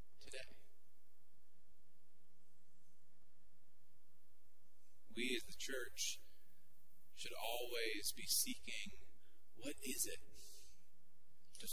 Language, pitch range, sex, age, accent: English, 90-110 Hz, male, 30-49, American